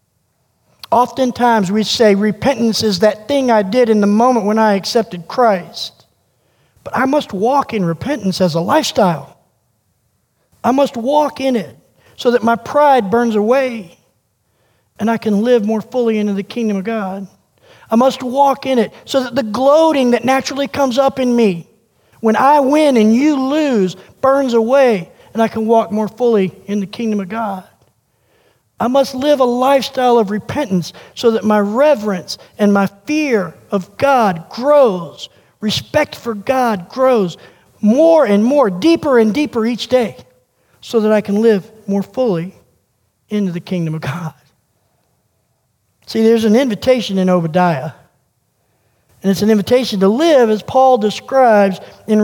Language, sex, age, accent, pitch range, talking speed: English, male, 50-69, American, 195-255 Hz, 160 wpm